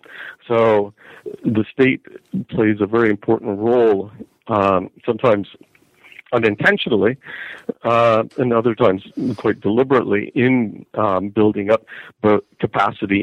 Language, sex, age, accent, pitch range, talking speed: English, male, 50-69, American, 105-120 Hz, 105 wpm